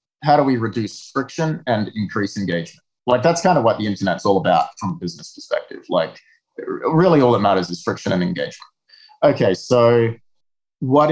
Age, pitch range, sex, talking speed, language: 20-39, 105-140 Hz, male, 180 wpm, Danish